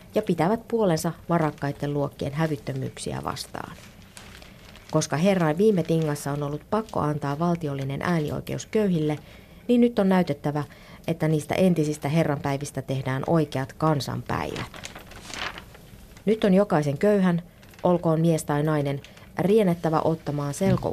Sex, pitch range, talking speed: female, 145-175 Hz, 115 wpm